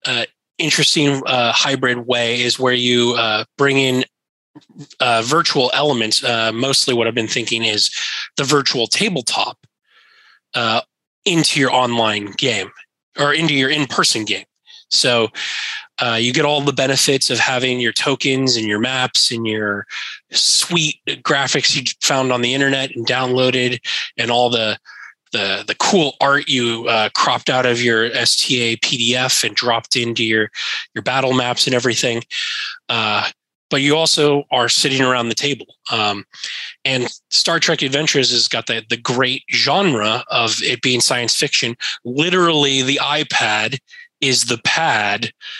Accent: American